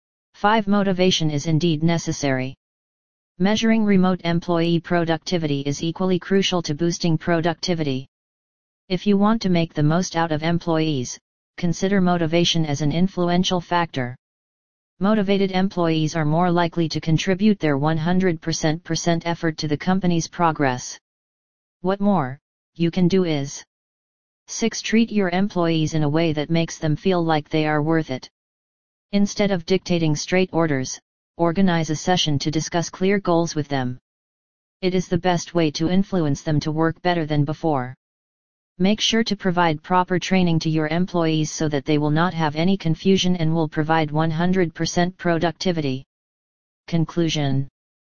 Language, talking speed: English, 145 wpm